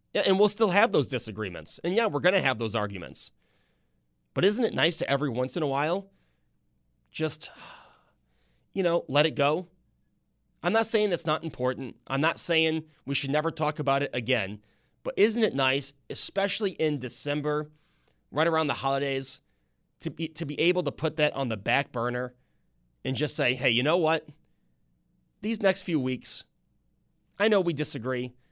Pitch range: 130-165 Hz